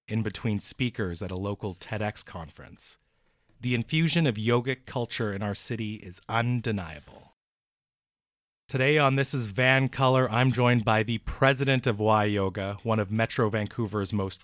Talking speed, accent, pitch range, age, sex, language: 155 wpm, American, 100-130 Hz, 30-49, male, English